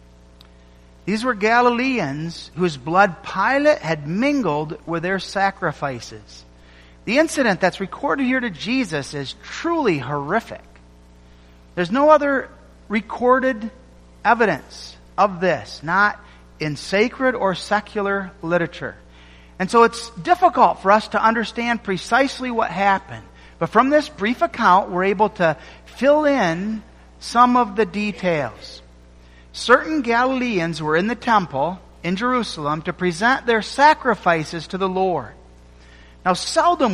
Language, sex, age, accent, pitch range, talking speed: English, male, 50-69, American, 150-240 Hz, 125 wpm